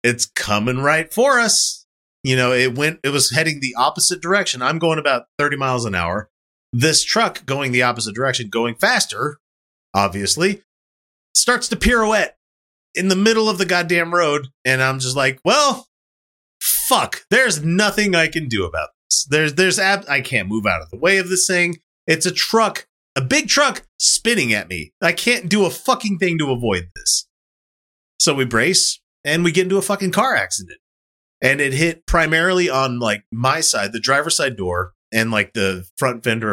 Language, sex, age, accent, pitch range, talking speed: English, male, 30-49, American, 120-180 Hz, 185 wpm